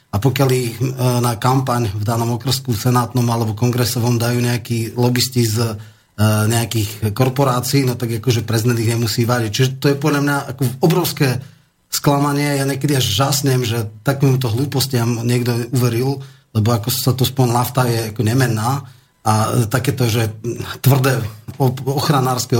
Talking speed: 140 wpm